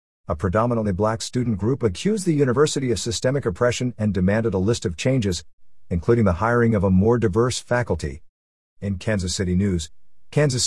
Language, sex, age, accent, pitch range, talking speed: English, male, 50-69, American, 95-125 Hz, 170 wpm